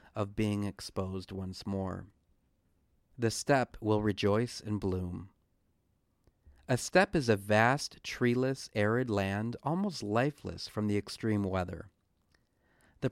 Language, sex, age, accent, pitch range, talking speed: English, male, 40-59, American, 100-130 Hz, 120 wpm